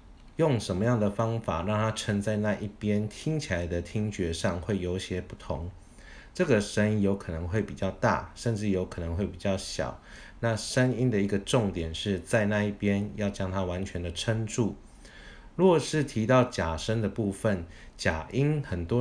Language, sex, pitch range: Chinese, male, 90-115 Hz